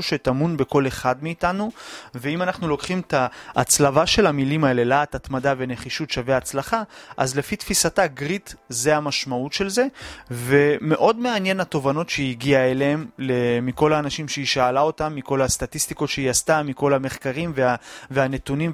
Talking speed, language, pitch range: 140 wpm, Hebrew, 130-170 Hz